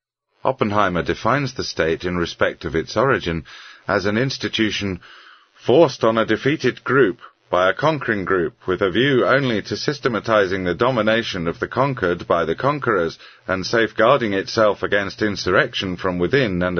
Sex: male